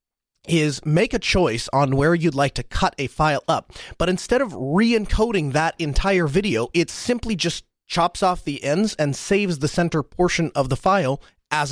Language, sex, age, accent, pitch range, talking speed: English, male, 30-49, American, 120-155 Hz, 185 wpm